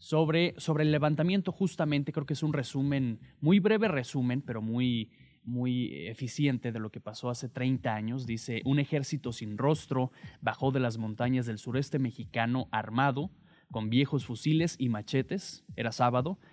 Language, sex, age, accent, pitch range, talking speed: Spanish, male, 20-39, Mexican, 115-150 Hz, 160 wpm